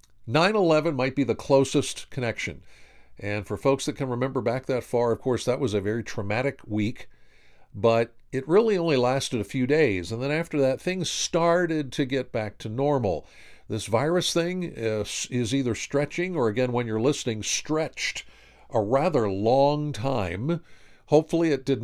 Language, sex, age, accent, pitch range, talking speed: English, male, 50-69, American, 115-150 Hz, 170 wpm